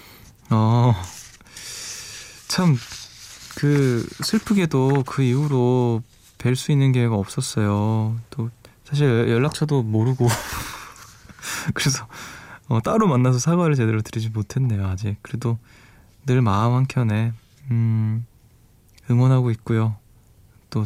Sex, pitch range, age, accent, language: male, 110-130 Hz, 20-39, native, Korean